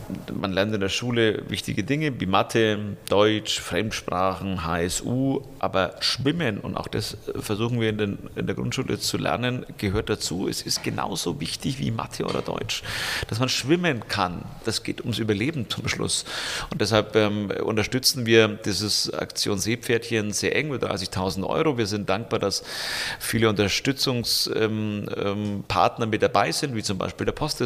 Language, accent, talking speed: German, German, 160 wpm